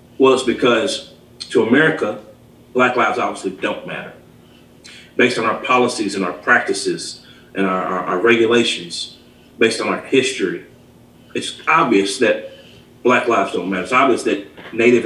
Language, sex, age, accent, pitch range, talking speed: English, male, 30-49, American, 110-125 Hz, 150 wpm